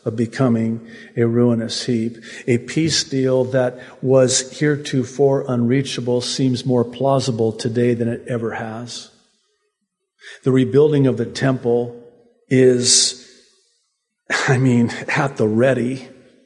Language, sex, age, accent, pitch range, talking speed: English, male, 50-69, American, 125-165 Hz, 115 wpm